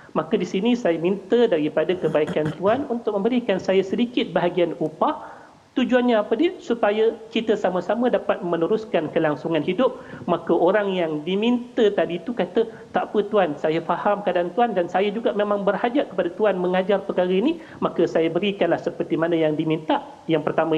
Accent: Indonesian